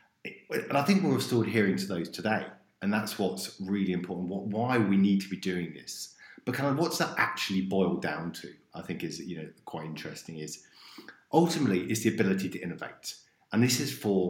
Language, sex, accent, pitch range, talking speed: English, male, British, 90-110 Hz, 205 wpm